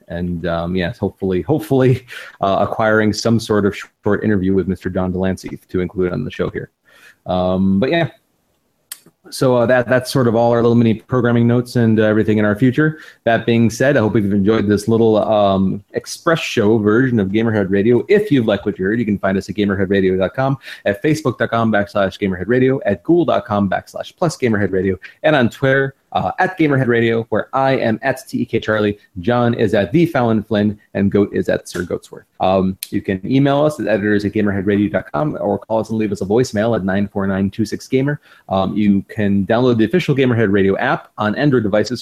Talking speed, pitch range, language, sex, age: 195 wpm, 100-120 Hz, English, male, 30-49